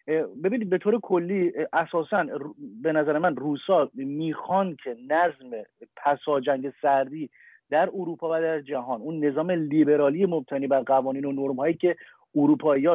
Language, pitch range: Persian, 150-185 Hz